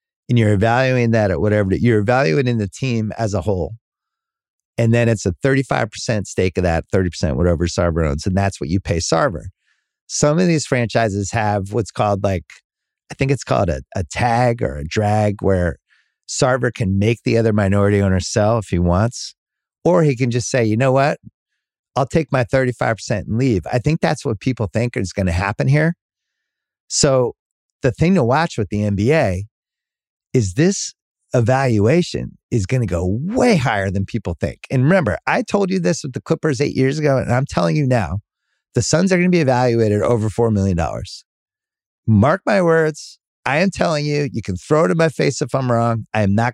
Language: English